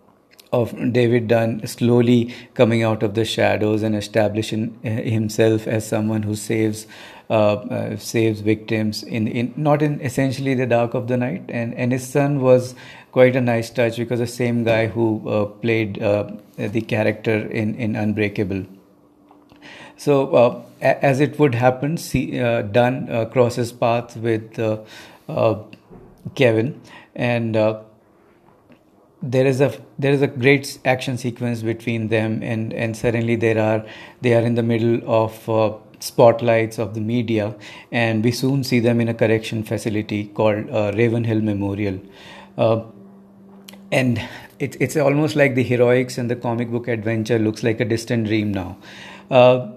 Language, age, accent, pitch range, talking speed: English, 50-69, Indian, 110-125 Hz, 155 wpm